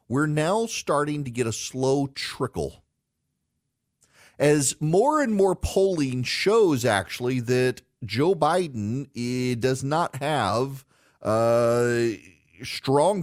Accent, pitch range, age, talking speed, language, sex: American, 115-160 Hz, 40-59, 105 wpm, English, male